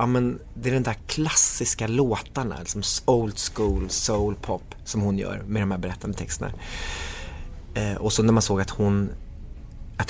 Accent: native